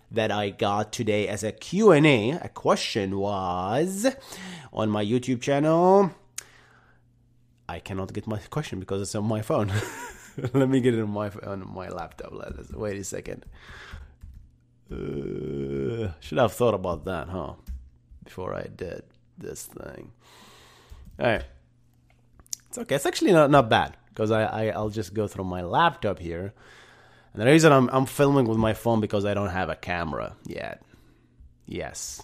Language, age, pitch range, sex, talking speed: English, 30-49, 95-130 Hz, male, 160 wpm